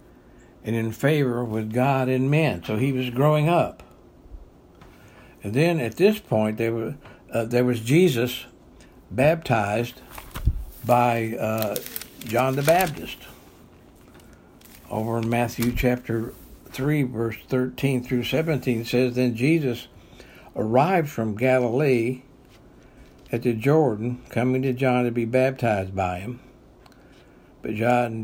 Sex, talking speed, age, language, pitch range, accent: male, 120 wpm, 60-79, English, 115-130 Hz, American